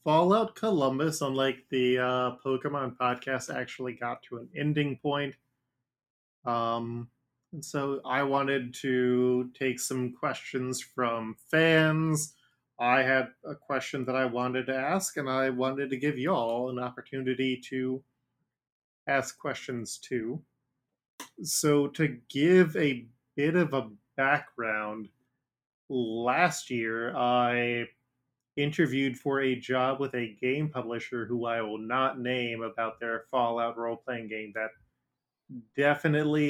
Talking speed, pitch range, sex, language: 125 wpm, 125-140 Hz, male, English